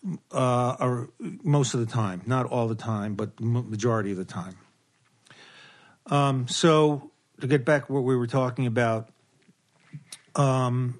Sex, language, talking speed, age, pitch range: male, English, 145 wpm, 40-59, 125-145 Hz